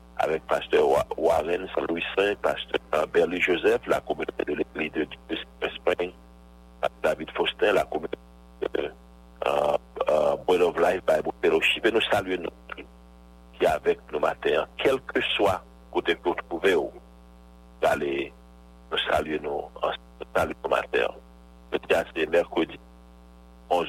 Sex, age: male, 60-79